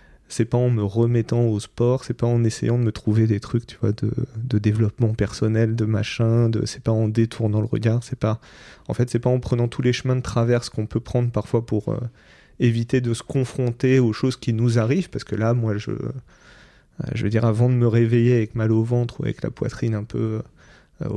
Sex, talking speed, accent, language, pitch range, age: male, 230 wpm, French, French, 110-125 Hz, 30-49